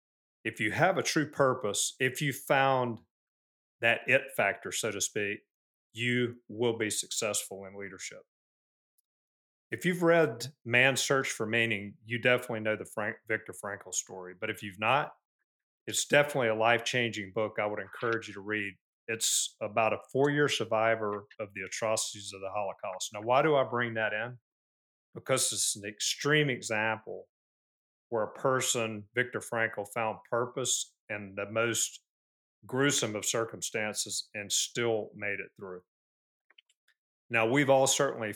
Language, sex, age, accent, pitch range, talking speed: English, male, 40-59, American, 105-125 Hz, 150 wpm